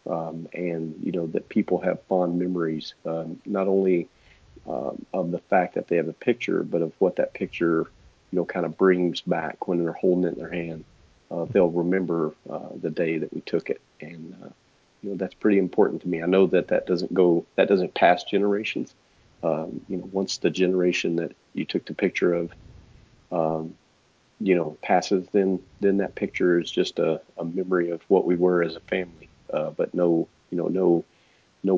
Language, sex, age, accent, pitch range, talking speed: English, male, 40-59, American, 85-95 Hz, 205 wpm